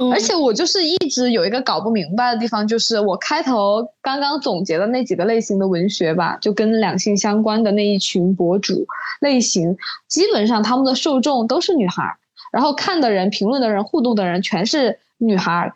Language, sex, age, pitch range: Chinese, female, 20-39, 205-285 Hz